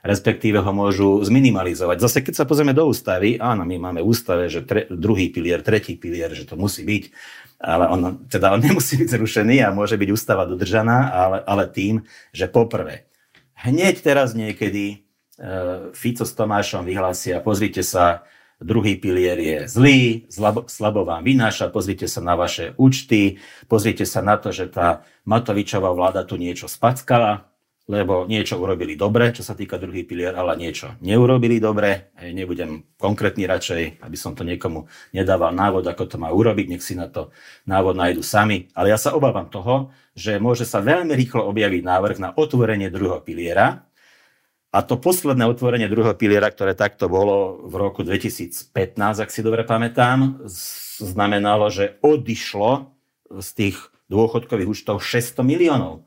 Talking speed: 160 wpm